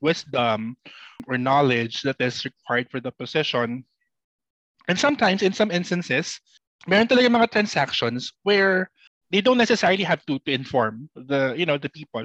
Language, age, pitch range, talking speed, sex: Filipino, 20-39, 130-190 Hz, 145 wpm, male